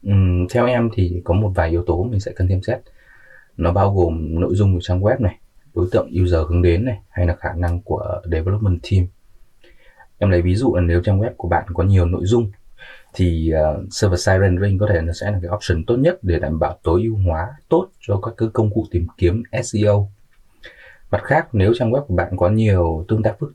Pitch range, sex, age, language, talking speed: 90-110 Hz, male, 20-39, English, 230 wpm